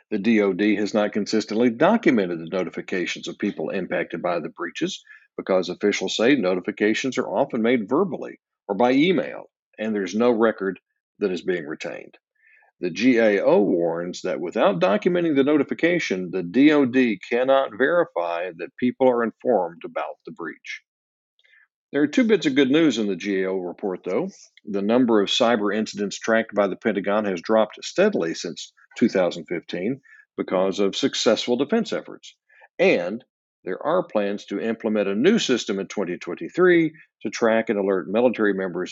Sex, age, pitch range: male, 60-79, 95-125 Hz